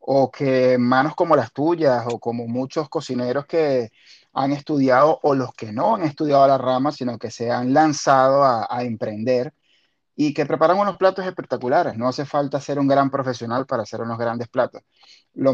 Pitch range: 130-165 Hz